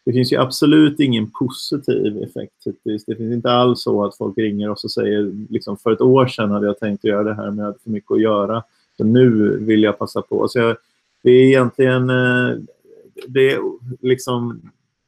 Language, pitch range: Swedish, 110-130 Hz